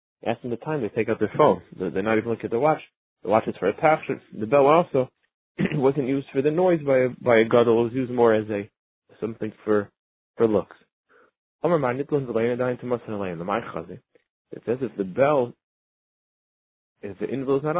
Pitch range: 110-140 Hz